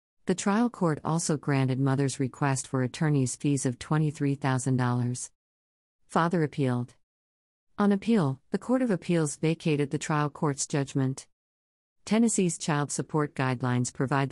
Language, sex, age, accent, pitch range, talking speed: English, female, 50-69, American, 130-155 Hz, 125 wpm